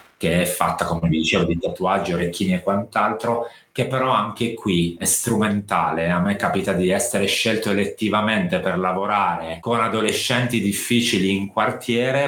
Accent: native